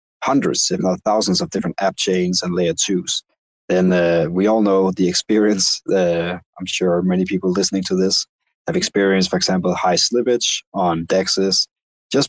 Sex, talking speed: male, 170 wpm